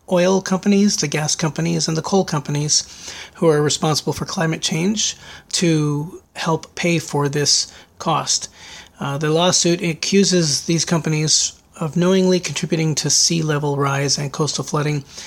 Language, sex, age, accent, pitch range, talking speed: English, male, 30-49, American, 150-175 Hz, 145 wpm